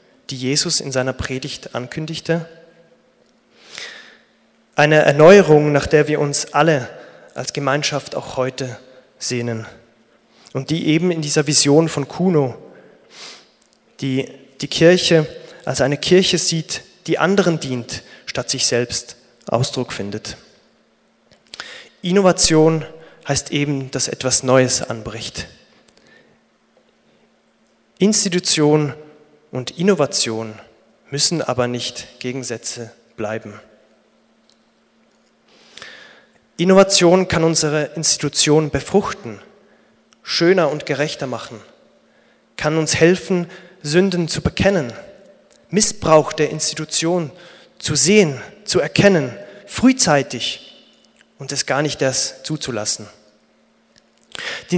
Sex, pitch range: male, 125-170 Hz